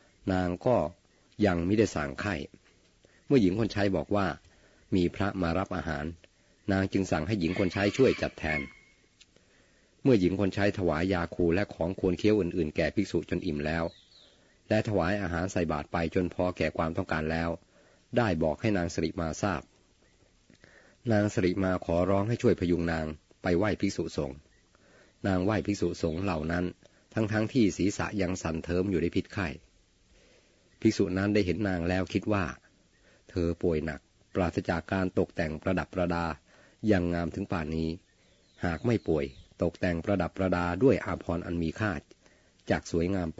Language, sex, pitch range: Thai, male, 85-100 Hz